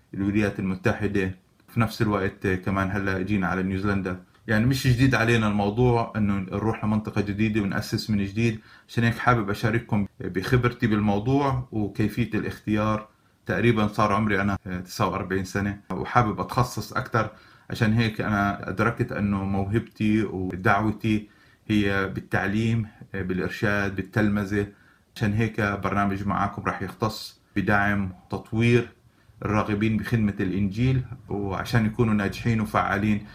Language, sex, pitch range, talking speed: Arabic, male, 100-115 Hz, 115 wpm